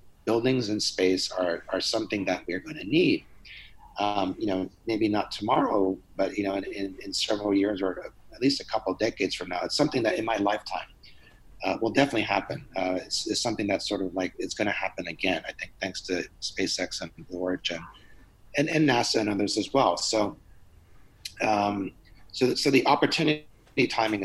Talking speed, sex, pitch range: 195 wpm, male, 95-120 Hz